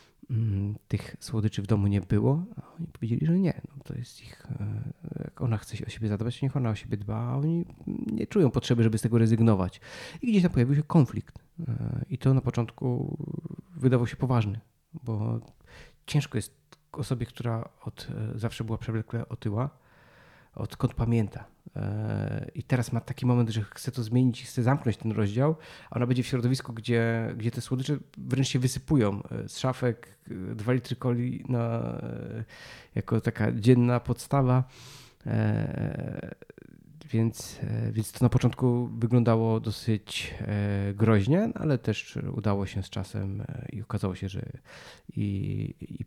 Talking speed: 150 wpm